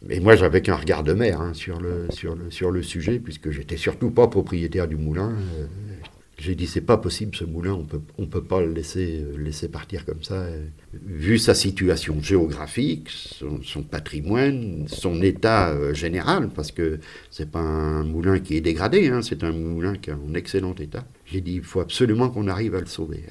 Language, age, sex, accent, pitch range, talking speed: French, 50-69, male, French, 80-100 Hz, 210 wpm